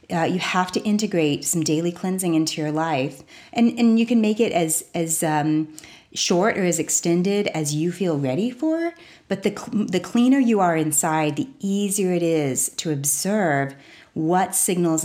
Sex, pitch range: female, 150-195 Hz